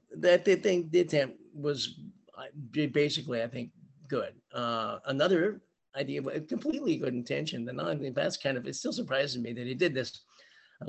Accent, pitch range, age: American, 115-145 Hz, 50-69